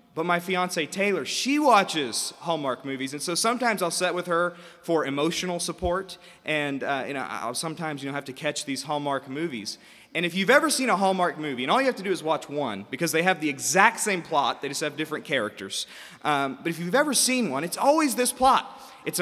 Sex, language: male, English